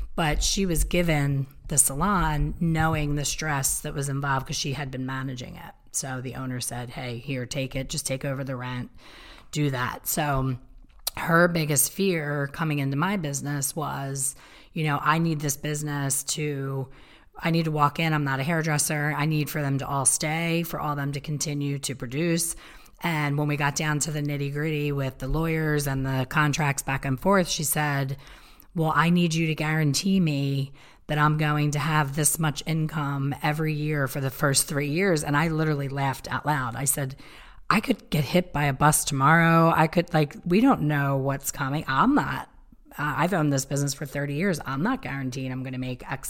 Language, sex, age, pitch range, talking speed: English, female, 30-49, 135-160 Hz, 205 wpm